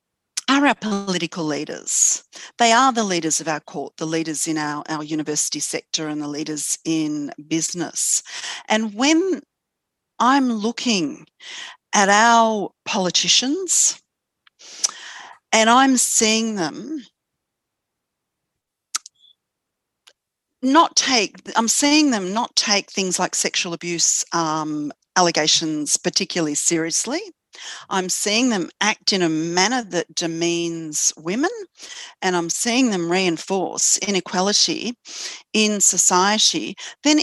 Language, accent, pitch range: English, Australian, 170-250 Hz